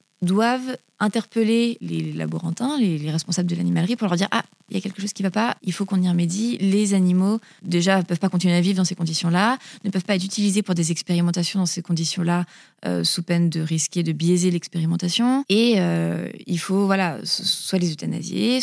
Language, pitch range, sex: French, 175-210 Hz, female